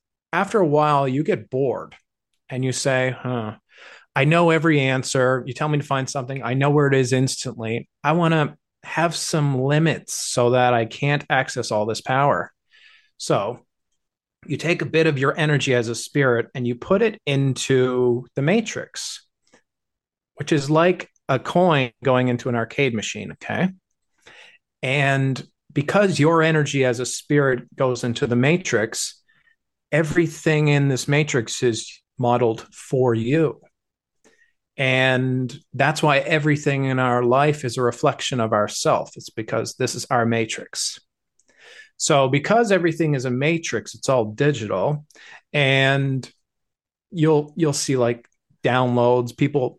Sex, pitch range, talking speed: male, 125-155 Hz, 145 wpm